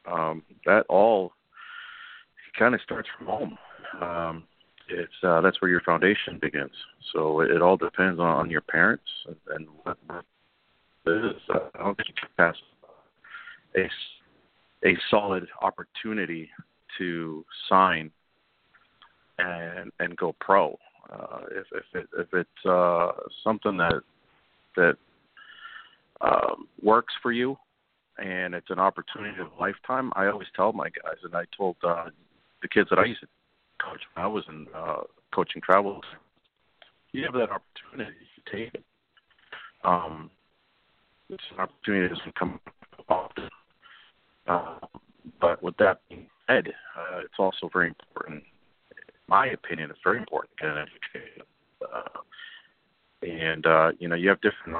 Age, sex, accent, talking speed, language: 40-59, male, American, 140 wpm, English